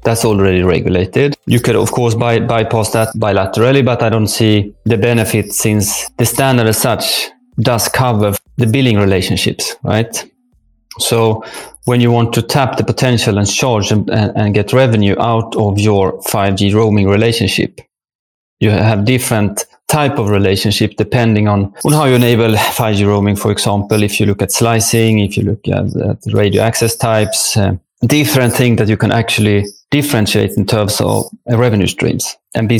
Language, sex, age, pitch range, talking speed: English, male, 30-49, 100-120 Hz, 165 wpm